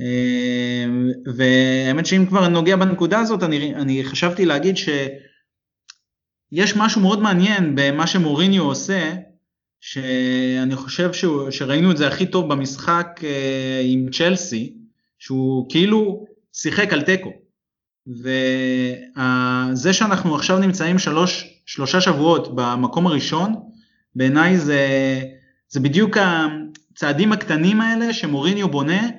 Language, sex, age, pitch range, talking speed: Hebrew, male, 20-39, 140-195 Hz, 95 wpm